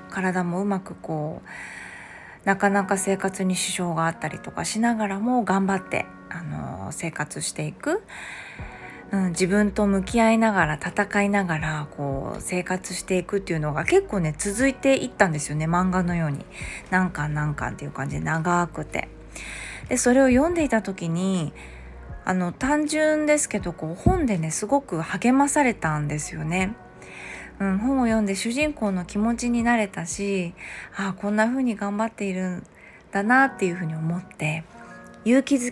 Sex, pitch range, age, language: female, 160-225 Hz, 20-39, Japanese